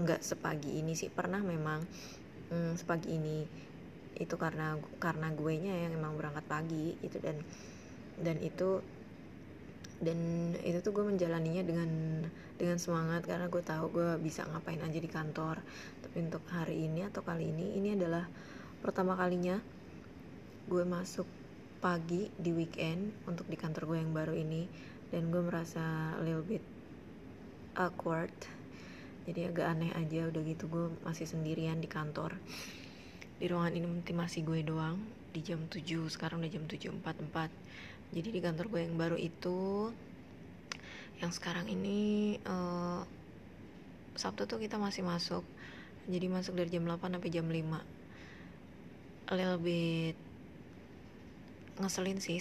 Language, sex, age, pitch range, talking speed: Indonesian, female, 20-39, 160-180 Hz, 140 wpm